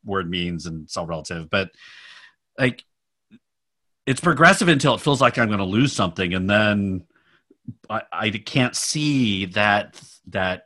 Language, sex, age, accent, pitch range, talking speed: English, male, 40-59, American, 95-130 Hz, 140 wpm